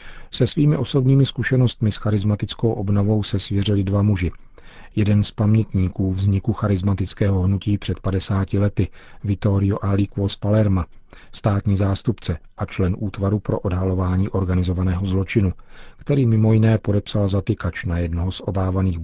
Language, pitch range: Czech, 95-110 Hz